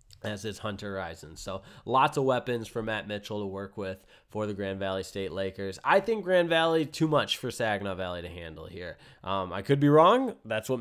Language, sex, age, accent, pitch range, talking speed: English, male, 20-39, American, 105-145 Hz, 215 wpm